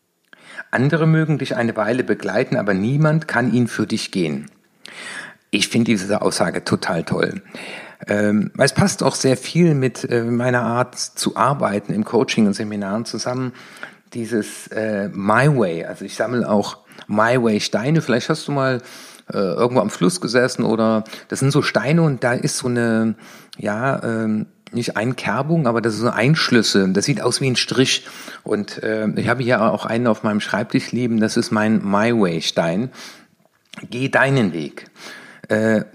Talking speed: 160 wpm